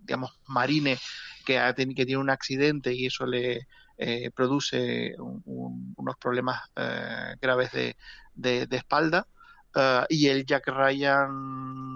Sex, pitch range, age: male, 130-155 Hz, 30-49